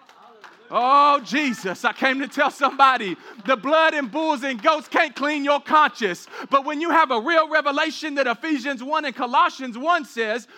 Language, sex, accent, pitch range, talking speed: English, male, American, 225-305 Hz, 175 wpm